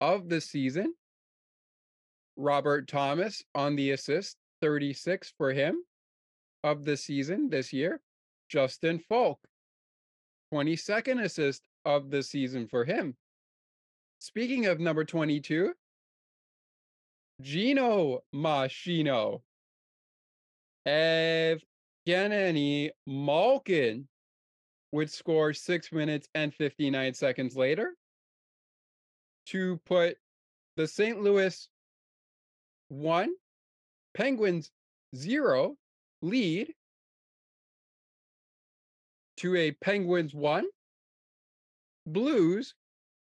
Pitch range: 145-190 Hz